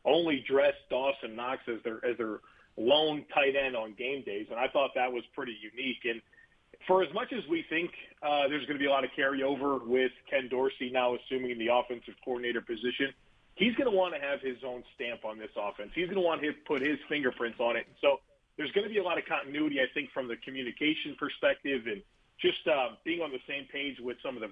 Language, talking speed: English, 230 wpm